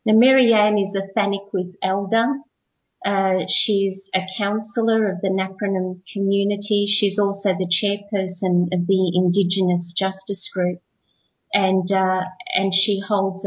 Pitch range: 185-220 Hz